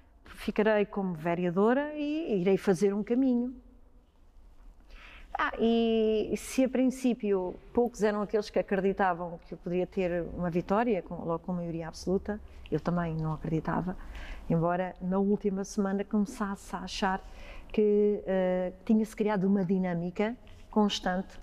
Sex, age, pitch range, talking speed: female, 40-59, 175-215 Hz, 135 wpm